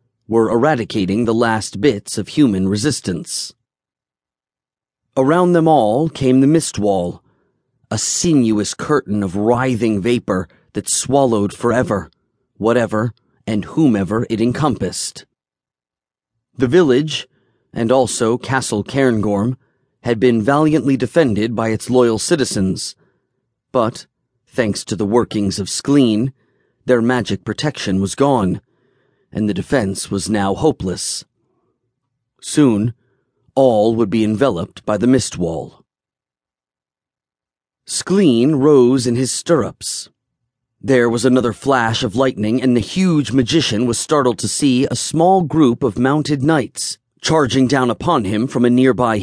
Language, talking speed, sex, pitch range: English, 125 wpm, male, 105-130 Hz